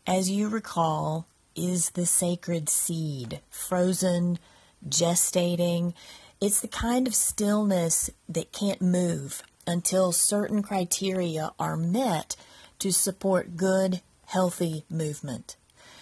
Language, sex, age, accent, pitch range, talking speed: English, female, 40-59, American, 175-215 Hz, 100 wpm